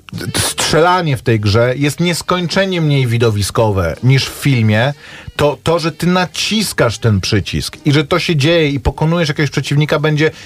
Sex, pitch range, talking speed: male, 115-150 Hz, 160 wpm